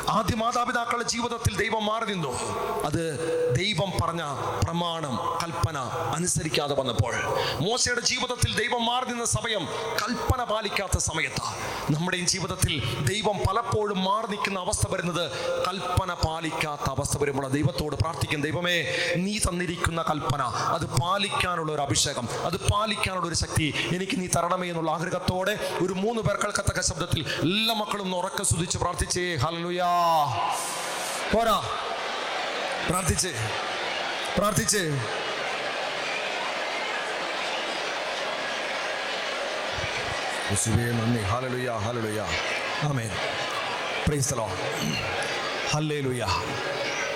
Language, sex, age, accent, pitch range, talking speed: English, male, 30-49, Indian, 145-190 Hz, 80 wpm